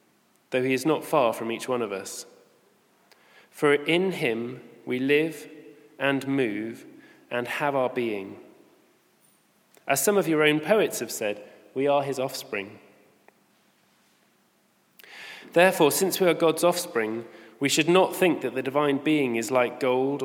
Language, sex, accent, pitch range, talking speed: English, male, British, 125-170 Hz, 150 wpm